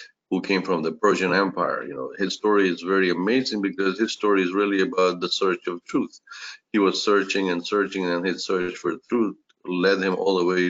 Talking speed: 215 wpm